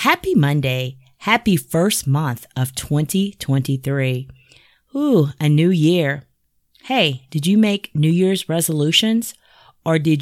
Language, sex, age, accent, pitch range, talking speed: English, female, 30-49, American, 135-170 Hz, 115 wpm